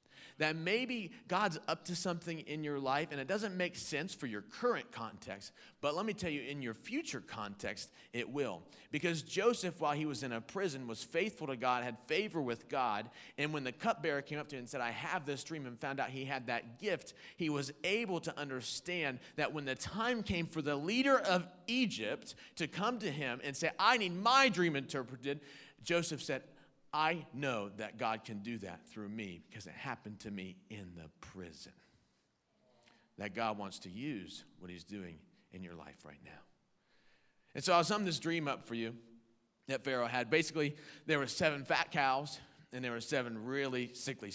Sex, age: male, 40-59